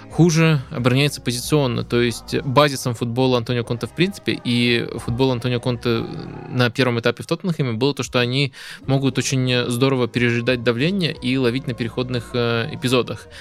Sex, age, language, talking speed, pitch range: male, 20-39, Russian, 155 wpm, 120-135 Hz